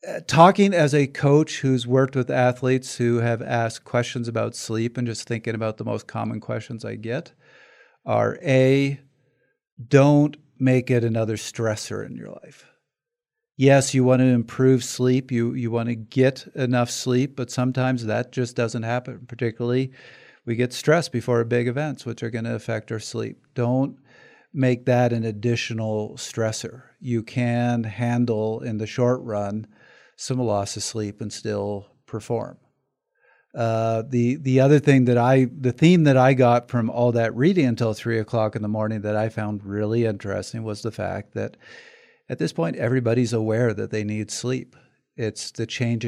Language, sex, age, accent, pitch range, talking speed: English, male, 50-69, American, 110-130 Hz, 170 wpm